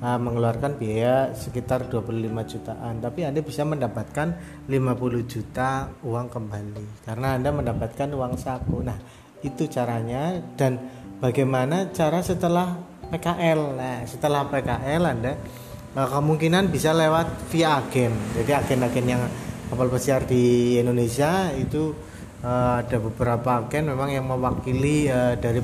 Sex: male